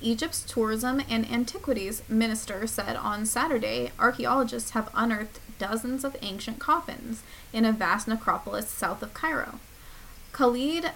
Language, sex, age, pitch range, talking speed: English, female, 20-39, 195-240 Hz, 125 wpm